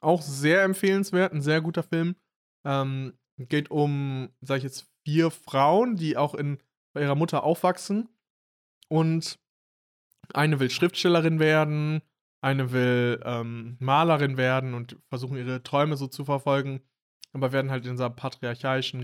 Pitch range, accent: 125-145 Hz, German